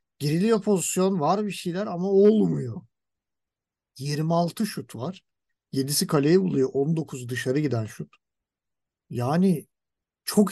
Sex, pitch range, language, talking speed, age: male, 140-190 Hz, Turkish, 110 wpm, 50-69